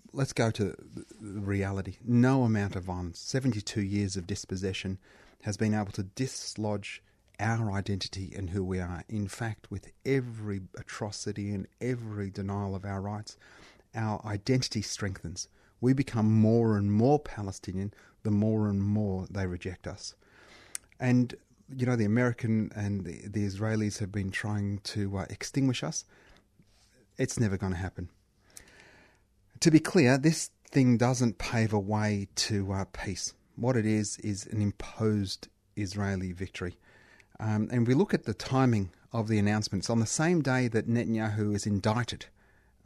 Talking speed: 155 wpm